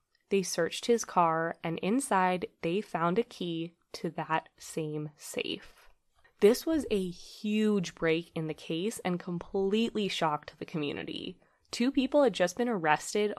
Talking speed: 150 wpm